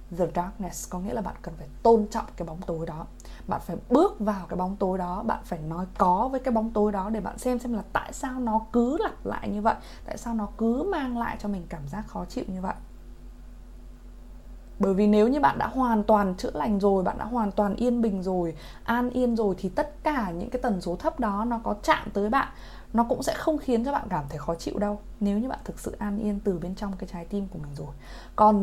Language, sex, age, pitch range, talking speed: Vietnamese, female, 20-39, 175-235 Hz, 255 wpm